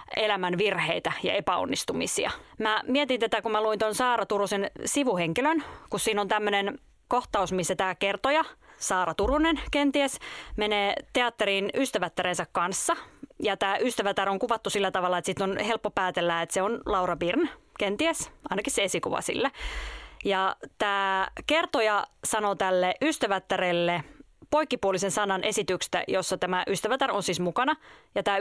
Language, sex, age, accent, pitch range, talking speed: Finnish, female, 20-39, native, 185-245 Hz, 145 wpm